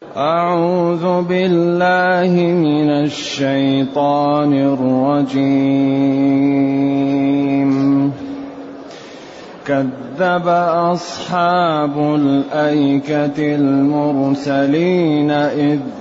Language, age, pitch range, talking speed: Arabic, 30-49, 135-165 Hz, 35 wpm